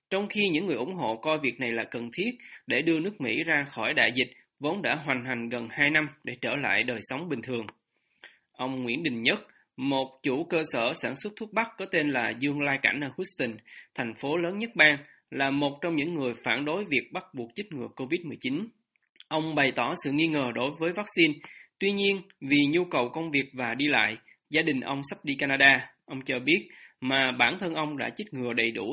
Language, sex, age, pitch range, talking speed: Vietnamese, male, 20-39, 130-170 Hz, 225 wpm